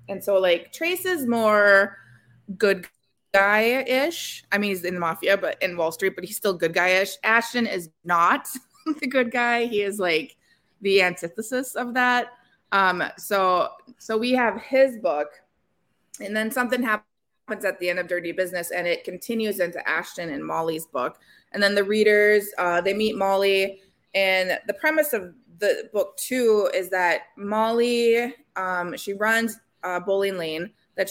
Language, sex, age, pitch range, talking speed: English, female, 20-39, 175-220 Hz, 165 wpm